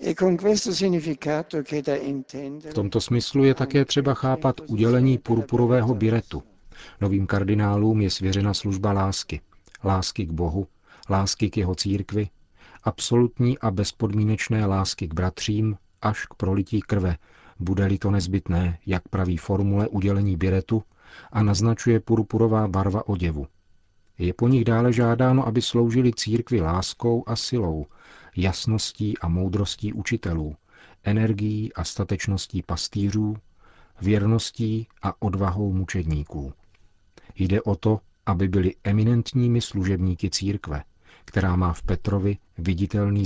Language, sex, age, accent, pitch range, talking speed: Czech, male, 40-59, native, 95-115 Hz, 115 wpm